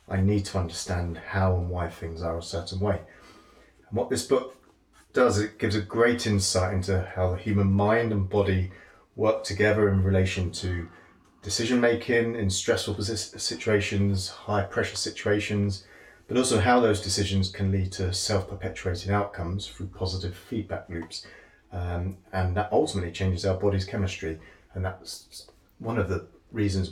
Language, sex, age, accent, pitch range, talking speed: English, male, 30-49, British, 90-105 Hz, 155 wpm